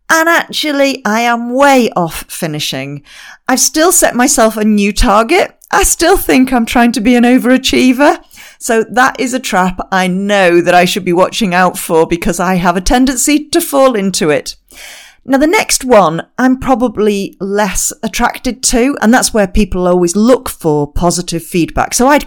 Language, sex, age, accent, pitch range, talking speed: English, female, 40-59, British, 175-230 Hz, 180 wpm